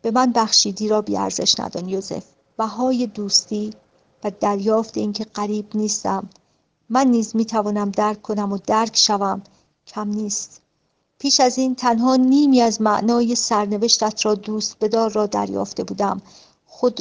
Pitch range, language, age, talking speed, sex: 195-230 Hz, Persian, 50-69, 140 wpm, female